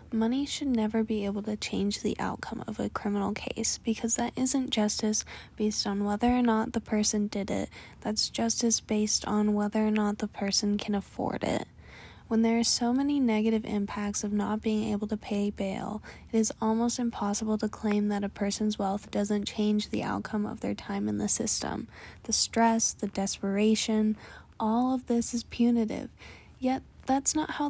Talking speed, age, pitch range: 185 wpm, 10-29, 210-240 Hz